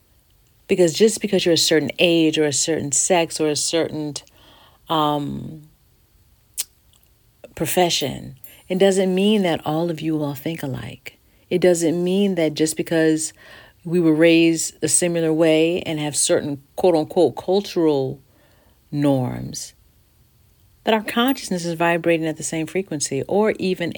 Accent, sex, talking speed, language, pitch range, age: American, female, 140 wpm, English, 140-175 Hz, 40-59